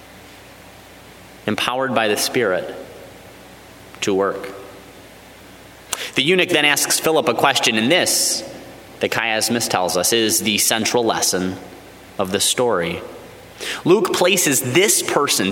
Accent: American